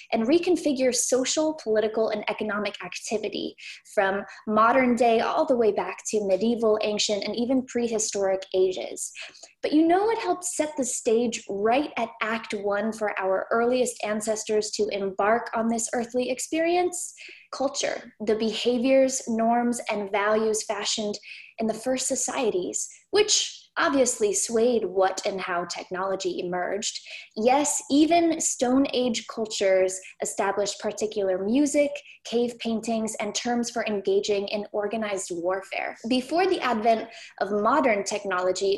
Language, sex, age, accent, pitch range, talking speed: English, female, 20-39, American, 205-255 Hz, 130 wpm